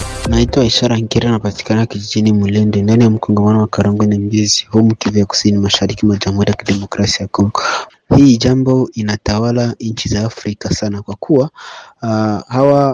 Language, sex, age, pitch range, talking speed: Swahili, male, 30-49, 95-115 Hz, 145 wpm